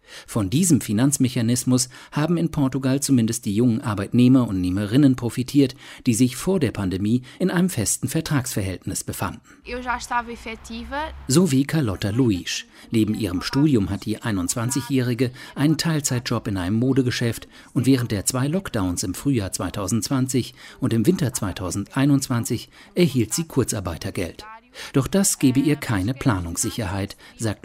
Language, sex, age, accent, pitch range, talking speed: German, male, 50-69, German, 110-145 Hz, 130 wpm